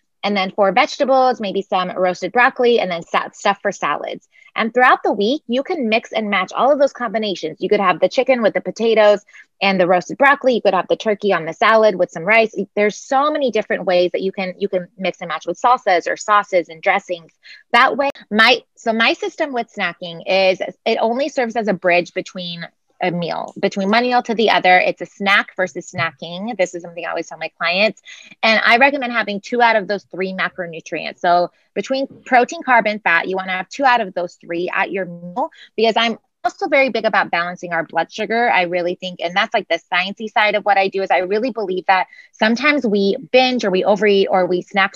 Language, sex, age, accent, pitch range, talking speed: English, female, 20-39, American, 180-230 Hz, 225 wpm